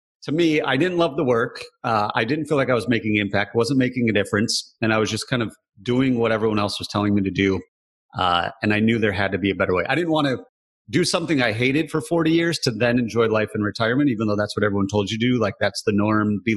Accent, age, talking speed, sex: American, 30-49, 280 wpm, male